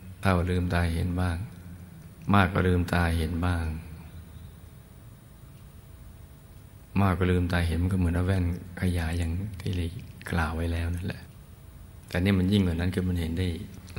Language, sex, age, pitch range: Thai, male, 60-79, 85-95 Hz